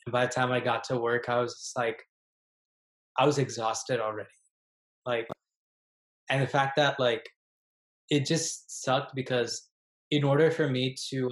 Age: 20-39